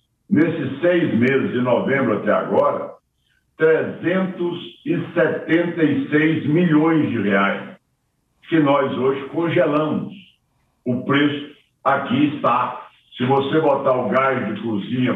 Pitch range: 135-175 Hz